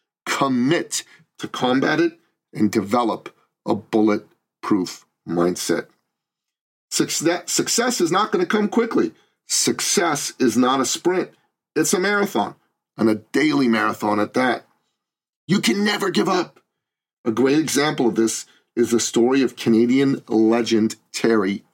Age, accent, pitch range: 40-59, American, 110-135 Hz